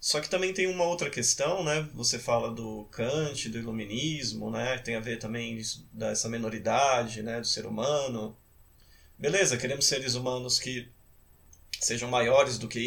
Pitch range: 115-150 Hz